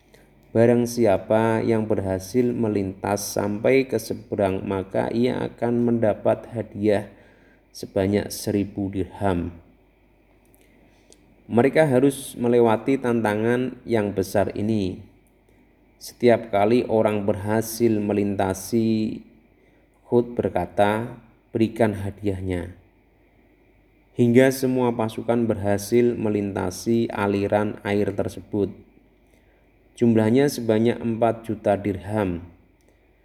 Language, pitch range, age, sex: Indonesian, 100-115 Hz, 30-49, male